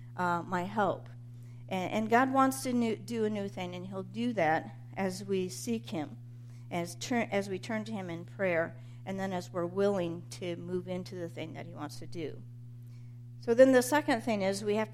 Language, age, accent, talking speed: English, 50-69, American, 215 wpm